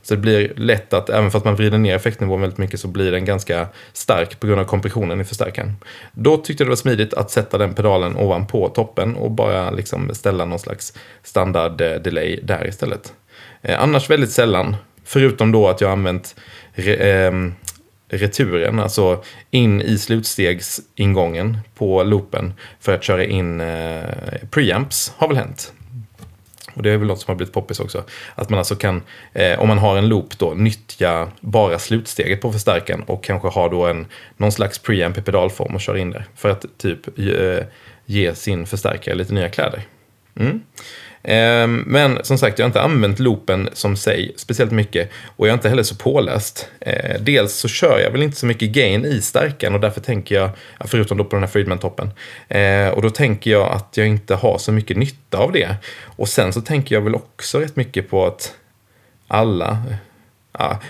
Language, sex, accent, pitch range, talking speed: English, male, Swedish, 95-115 Hz, 180 wpm